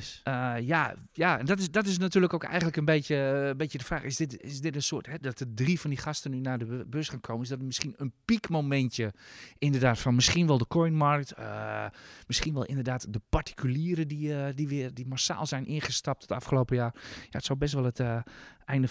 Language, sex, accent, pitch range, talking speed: Dutch, male, Dutch, 120-155 Hz, 230 wpm